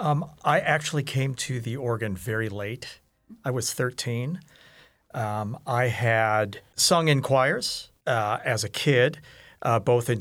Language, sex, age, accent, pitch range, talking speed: English, male, 50-69, American, 110-130 Hz, 145 wpm